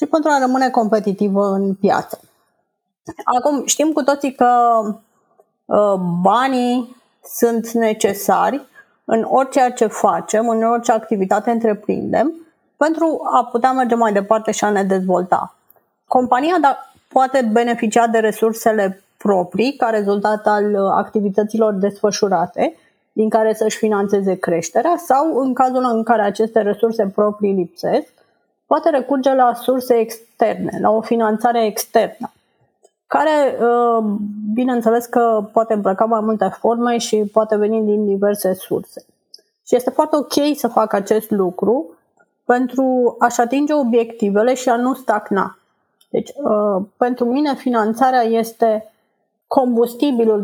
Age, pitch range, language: 30-49, 210-250 Hz, Romanian